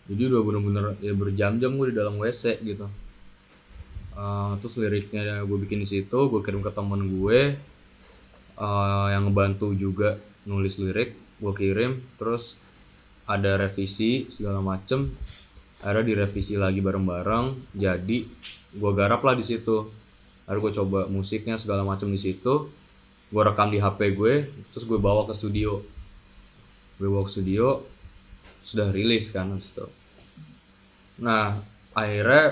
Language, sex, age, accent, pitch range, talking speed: Indonesian, male, 20-39, native, 95-110 Hz, 135 wpm